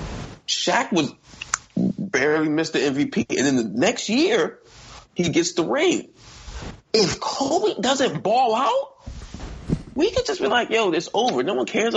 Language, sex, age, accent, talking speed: English, male, 20-39, American, 155 wpm